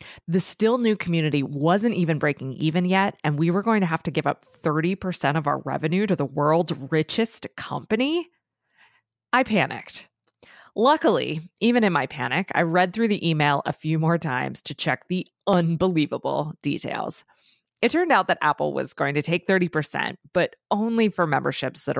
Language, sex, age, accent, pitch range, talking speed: English, female, 20-39, American, 150-220 Hz, 170 wpm